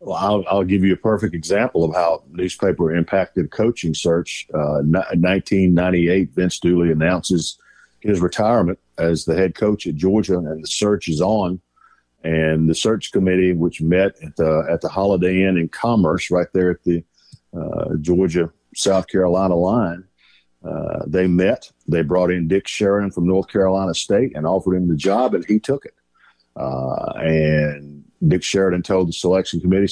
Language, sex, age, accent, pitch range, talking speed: English, male, 50-69, American, 85-95 Hz, 165 wpm